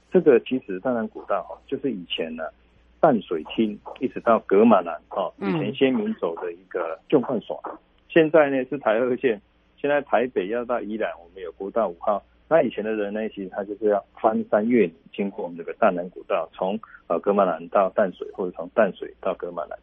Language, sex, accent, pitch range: Chinese, male, native, 105-155 Hz